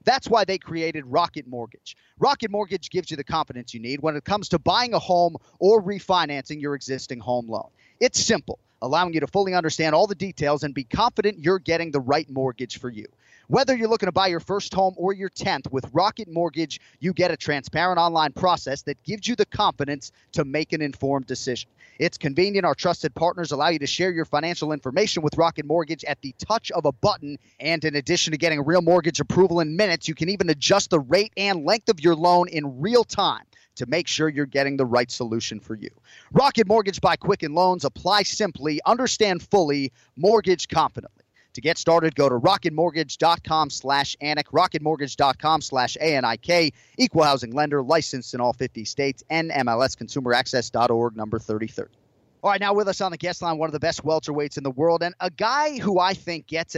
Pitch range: 135-180 Hz